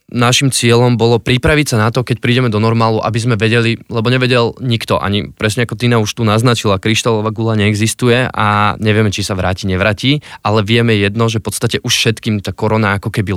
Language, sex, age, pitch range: Slovak, male, 20-39, 100-115 Hz